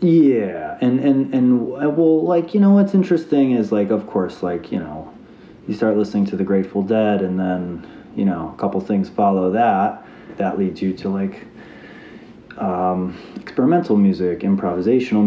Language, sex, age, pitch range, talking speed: English, male, 30-49, 90-110 Hz, 165 wpm